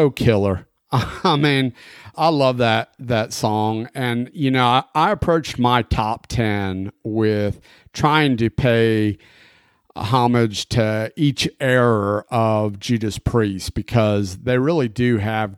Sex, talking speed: male, 125 wpm